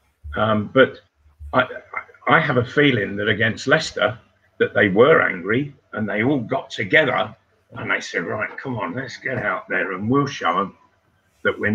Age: 50-69